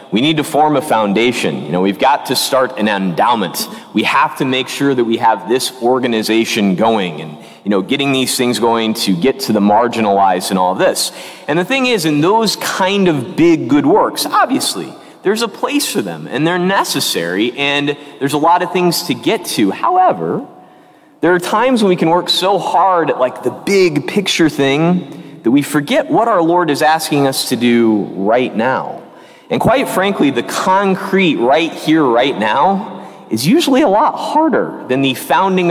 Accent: American